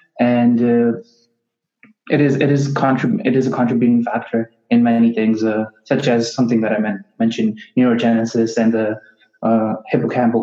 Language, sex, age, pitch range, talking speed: English, male, 20-39, 115-140 Hz, 165 wpm